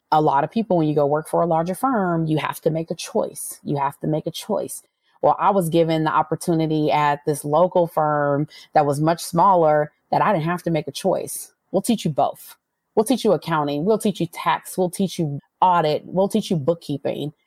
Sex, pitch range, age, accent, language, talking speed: female, 160-220 Hz, 30-49, American, English, 225 wpm